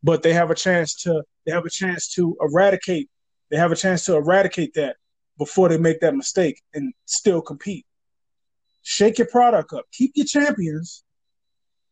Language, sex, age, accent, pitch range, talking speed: English, male, 30-49, American, 160-220 Hz, 170 wpm